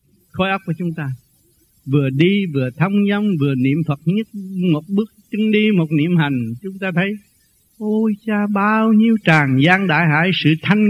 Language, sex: Vietnamese, male